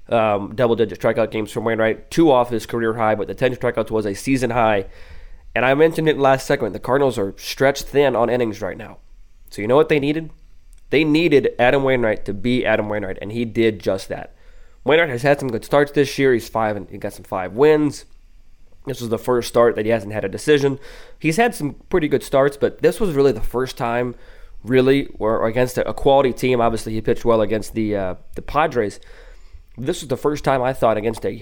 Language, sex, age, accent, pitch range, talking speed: English, male, 20-39, American, 105-135 Hz, 225 wpm